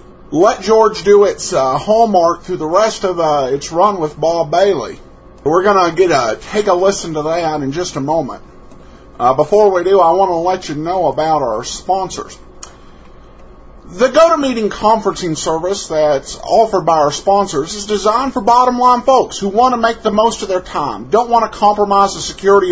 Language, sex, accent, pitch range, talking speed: English, male, American, 180-235 Hz, 195 wpm